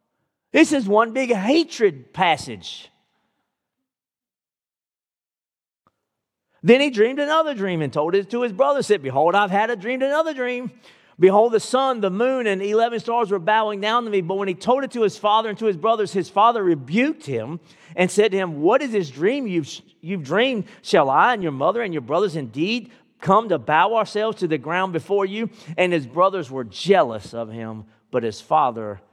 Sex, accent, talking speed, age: male, American, 195 wpm, 40-59